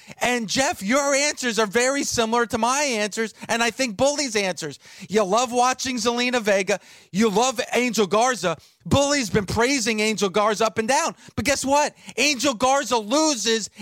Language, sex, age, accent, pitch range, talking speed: English, male, 30-49, American, 190-245 Hz, 165 wpm